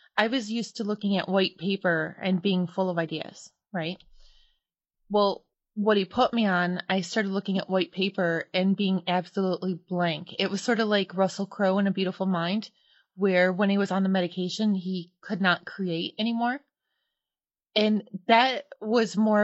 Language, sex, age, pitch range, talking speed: English, female, 20-39, 180-210 Hz, 175 wpm